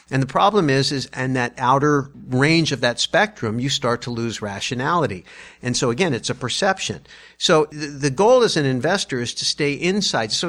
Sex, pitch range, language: male, 115-145 Hz, English